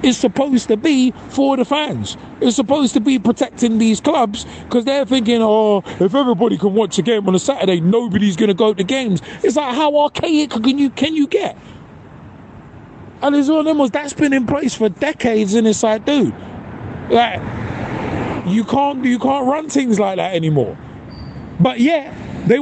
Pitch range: 190-260 Hz